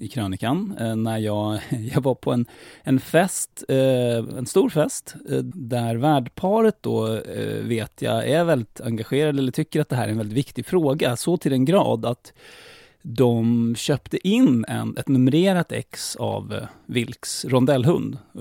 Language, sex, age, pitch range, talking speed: English, male, 30-49, 115-145 Hz, 150 wpm